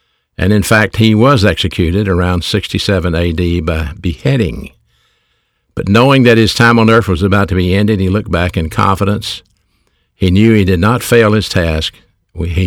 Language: English